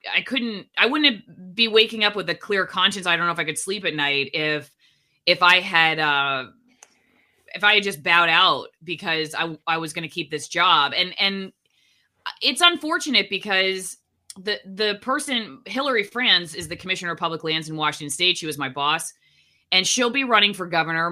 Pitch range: 165-225 Hz